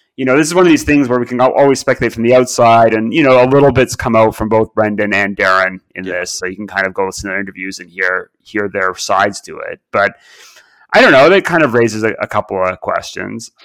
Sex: male